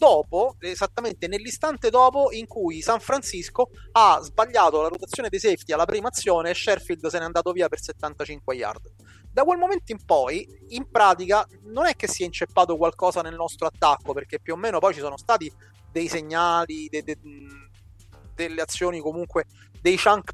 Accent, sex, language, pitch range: native, male, Italian, 160-235 Hz